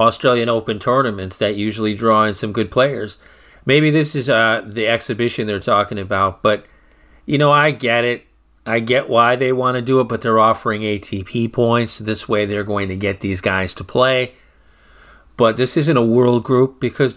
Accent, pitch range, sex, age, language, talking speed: American, 105-130 Hz, male, 40-59, English, 190 wpm